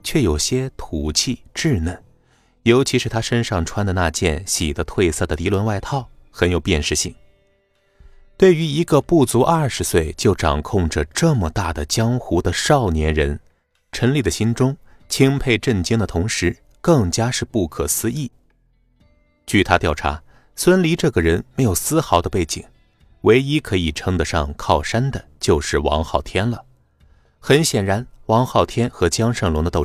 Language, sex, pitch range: Chinese, male, 80-125 Hz